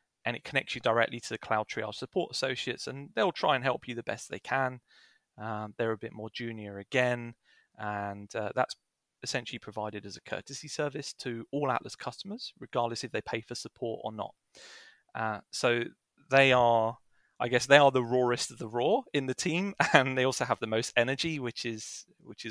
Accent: British